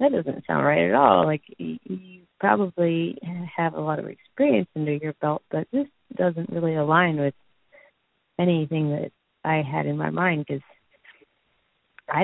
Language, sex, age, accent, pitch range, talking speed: English, female, 30-49, American, 145-180 Hz, 160 wpm